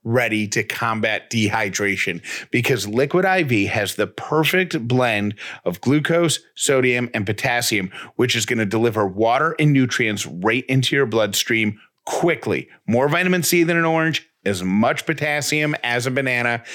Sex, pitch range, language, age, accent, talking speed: male, 110-140 Hz, English, 30-49, American, 145 wpm